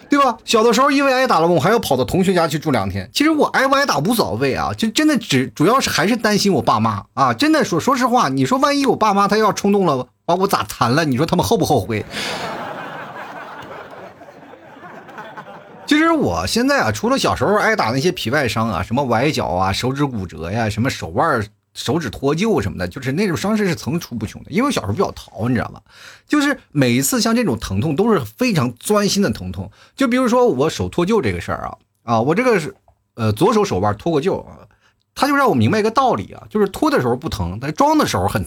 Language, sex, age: Chinese, male, 30-49